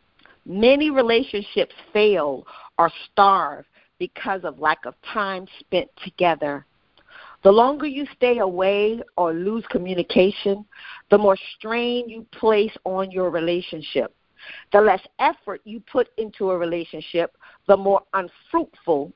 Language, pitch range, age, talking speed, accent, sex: English, 195-275 Hz, 50-69, 120 wpm, American, female